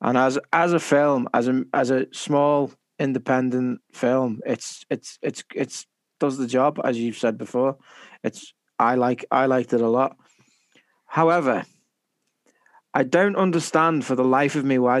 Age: 20-39